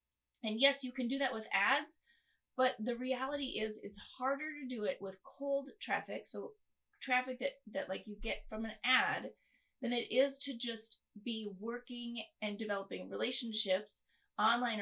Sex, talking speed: female, 165 wpm